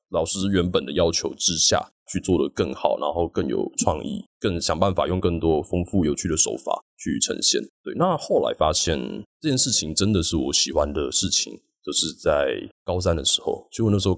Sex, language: male, Chinese